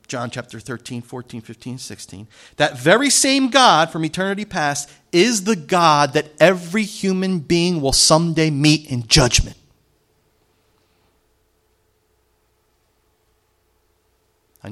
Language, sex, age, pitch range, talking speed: English, male, 40-59, 115-160 Hz, 105 wpm